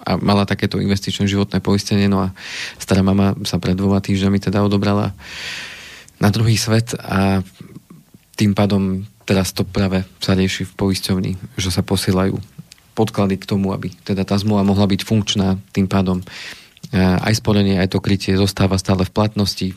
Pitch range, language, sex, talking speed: 95-105 Hz, Slovak, male, 160 wpm